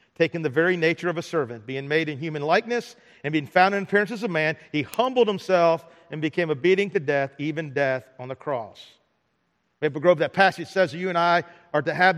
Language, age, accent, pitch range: English, 50-69, American, 165-215 Hz